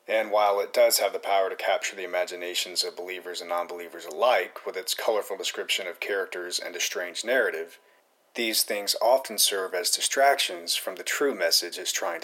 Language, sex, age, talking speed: English, male, 30-49, 185 wpm